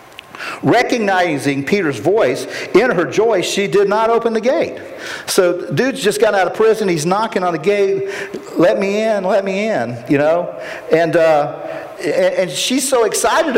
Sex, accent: male, American